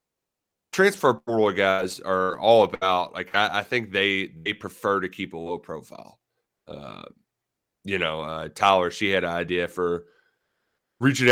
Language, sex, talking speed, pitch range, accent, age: English, male, 155 wpm, 95-135 Hz, American, 30-49